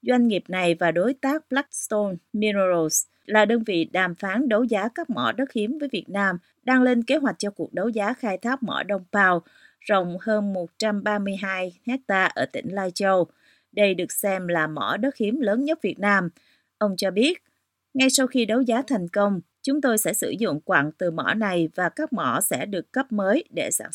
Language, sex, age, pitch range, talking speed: Vietnamese, female, 30-49, 185-255 Hz, 205 wpm